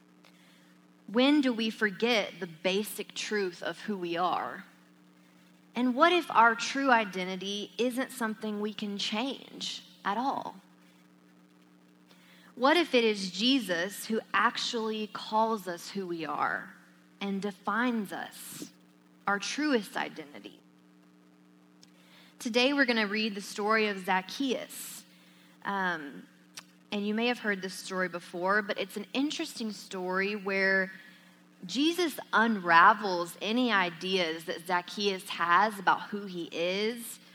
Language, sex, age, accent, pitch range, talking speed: English, female, 20-39, American, 165-225 Hz, 125 wpm